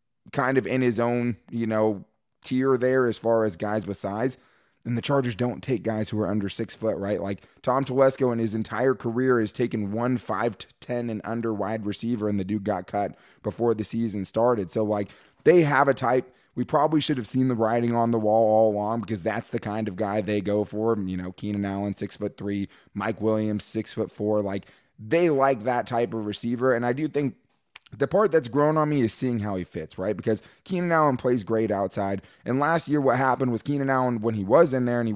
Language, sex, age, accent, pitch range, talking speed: English, male, 20-39, American, 105-130 Hz, 230 wpm